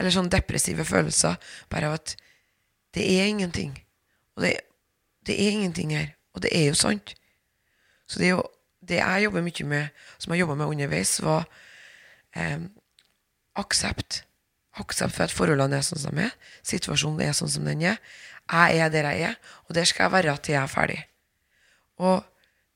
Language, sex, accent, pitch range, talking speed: English, female, Swedish, 145-175 Hz, 180 wpm